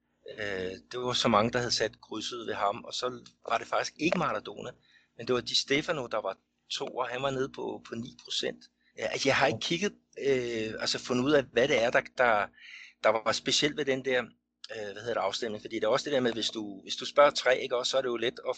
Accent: native